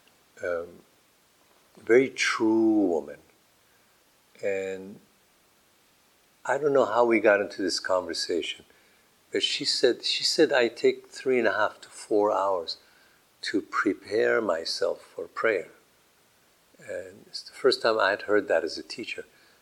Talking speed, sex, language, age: 140 wpm, male, English, 50-69